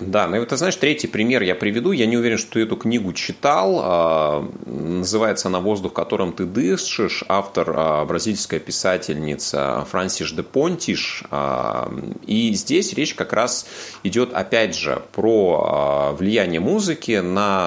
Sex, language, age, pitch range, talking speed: male, Russian, 30-49, 75-115 Hz, 140 wpm